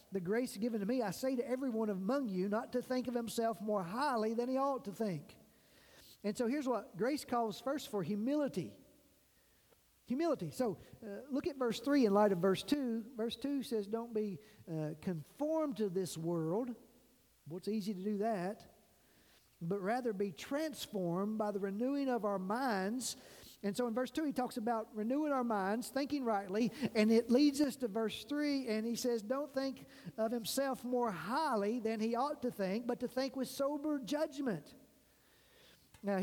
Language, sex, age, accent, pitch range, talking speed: English, male, 50-69, American, 200-250 Hz, 185 wpm